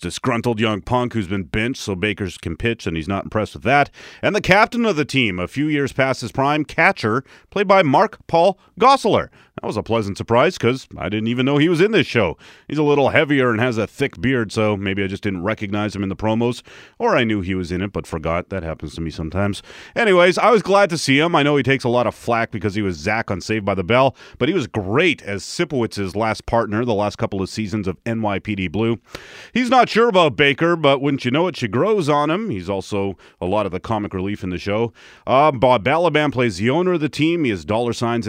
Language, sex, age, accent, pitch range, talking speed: English, male, 30-49, American, 100-140 Hz, 250 wpm